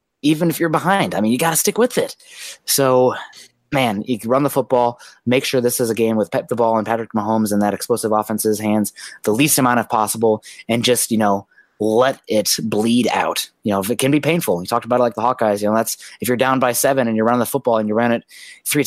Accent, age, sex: American, 20-39, male